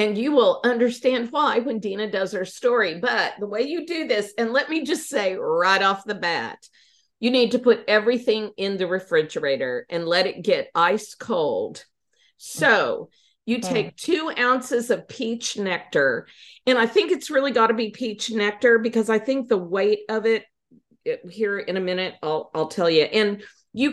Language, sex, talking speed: English, female, 190 wpm